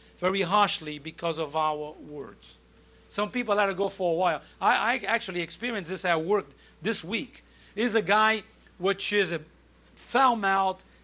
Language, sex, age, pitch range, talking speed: English, male, 40-59, 180-240 Hz, 170 wpm